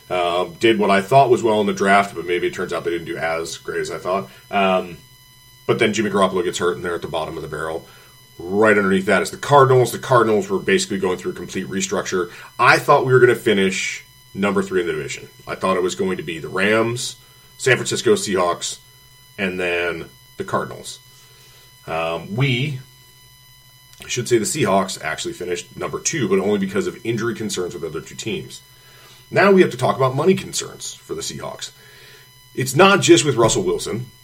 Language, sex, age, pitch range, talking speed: English, male, 30-49, 110-145 Hz, 205 wpm